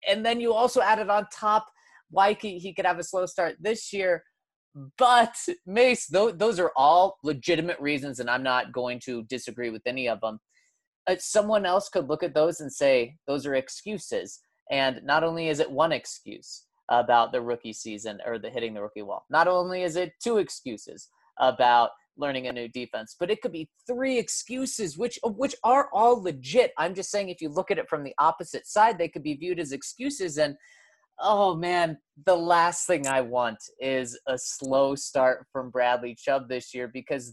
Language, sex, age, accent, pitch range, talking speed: English, male, 30-49, American, 130-200 Hz, 190 wpm